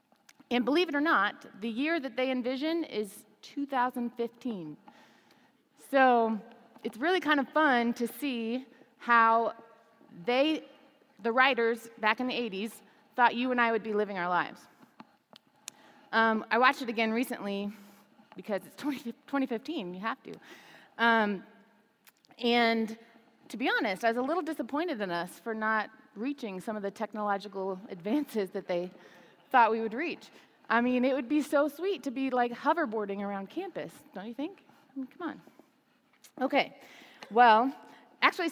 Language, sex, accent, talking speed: English, female, American, 155 wpm